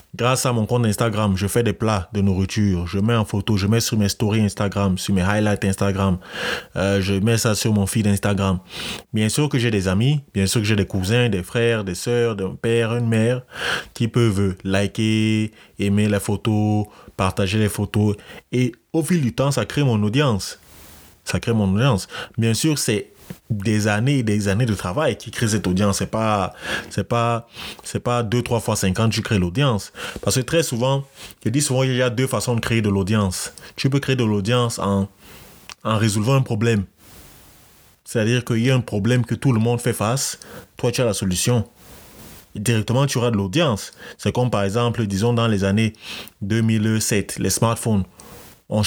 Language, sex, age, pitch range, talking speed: English, male, 30-49, 100-120 Hz, 200 wpm